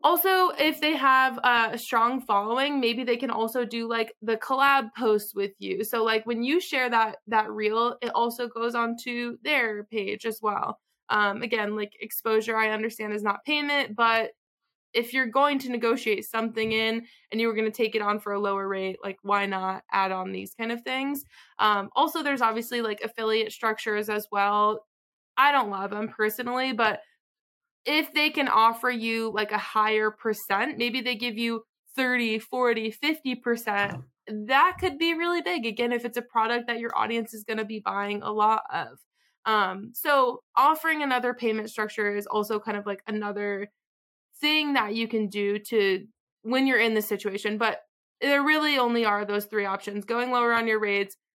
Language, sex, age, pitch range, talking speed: English, female, 20-39, 210-250 Hz, 190 wpm